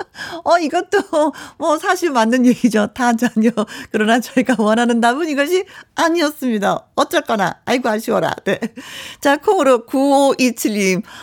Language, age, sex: Korean, 50-69, female